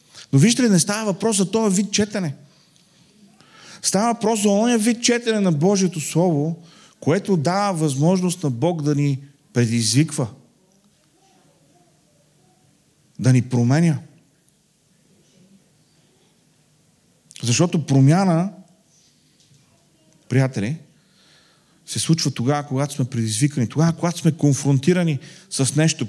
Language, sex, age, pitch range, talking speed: Bulgarian, male, 40-59, 135-175 Hz, 105 wpm